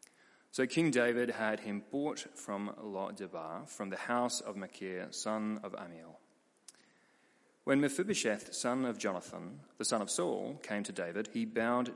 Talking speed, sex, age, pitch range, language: 155 wpm, male, 30-49, 100-130 Hz, English